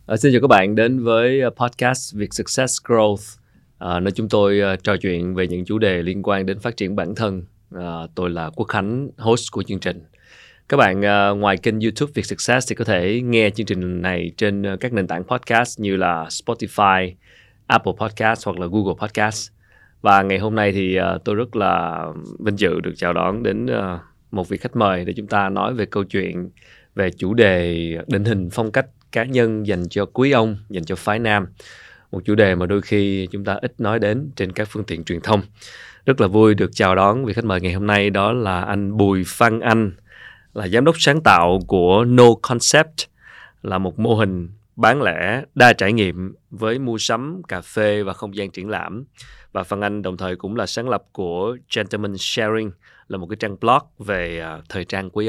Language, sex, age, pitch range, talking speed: Vietnamese, male, 20-39, 95-115 Hz, 205 wpm